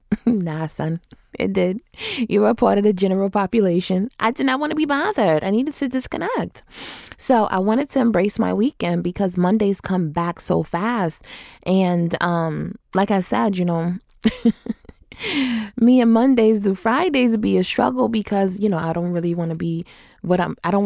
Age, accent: 20-39, American